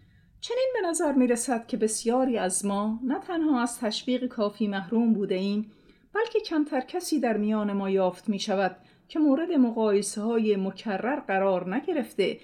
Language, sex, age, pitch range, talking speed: English, female, 40-59, 190-245 Hz, 145 wpm